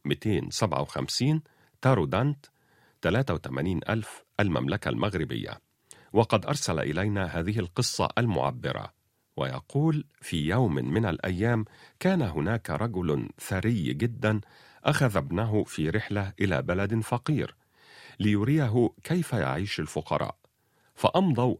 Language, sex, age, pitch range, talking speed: Arabic, male, 40-59, 90-125 Hz, 90 wpm